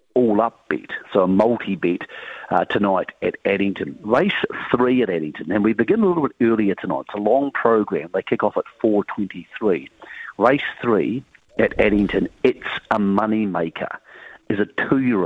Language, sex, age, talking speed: English, male, 50-69, 175 wpm